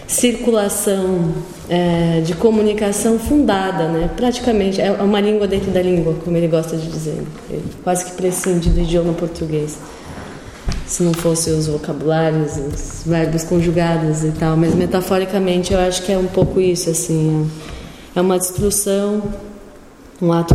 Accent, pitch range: Brazilian, 170-200 Hz